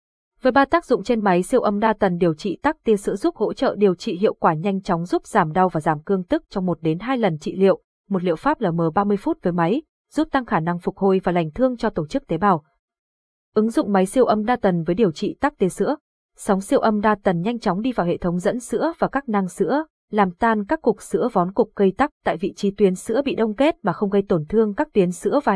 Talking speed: 275 wpm